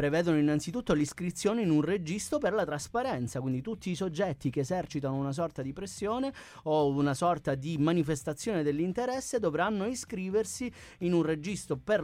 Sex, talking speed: male, 155 wpm